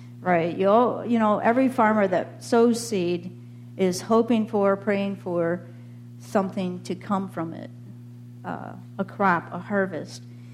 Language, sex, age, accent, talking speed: English, female, 50-69, American, 135 wpm